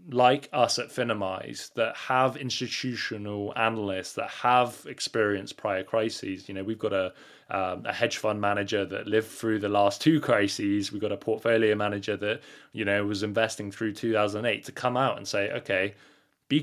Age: 20-39